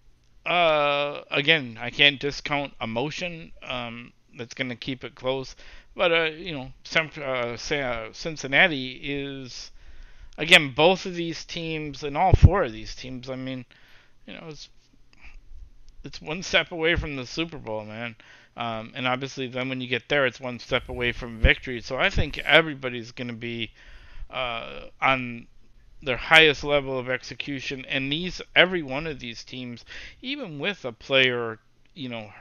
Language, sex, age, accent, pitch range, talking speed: English, male, 50-69, American, 120-155 Hz, 160 wpm